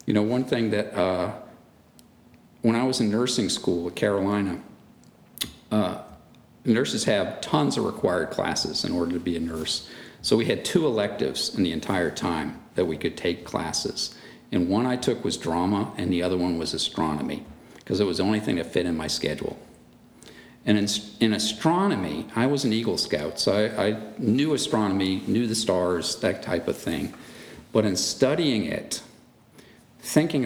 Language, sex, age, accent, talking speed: English, male, 50-69, American, 175 wpm